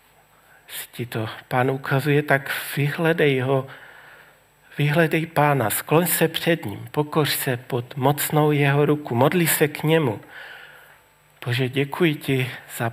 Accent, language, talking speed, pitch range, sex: native, Czech, 120 wpm, 125-145 Hz, male